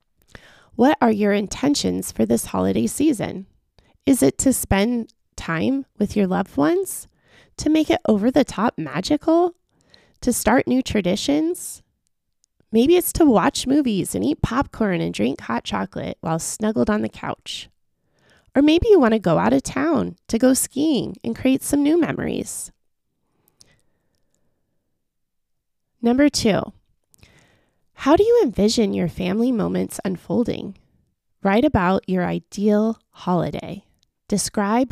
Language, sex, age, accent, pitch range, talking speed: English, female, 20-39, American, 165-265 Hz, 130 wpm